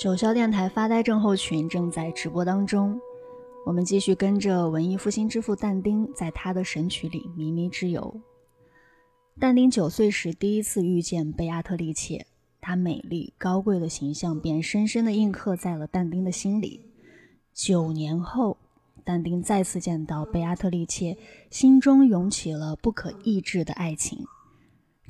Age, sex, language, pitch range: 20-39, female, Chinese, 170-210 Hz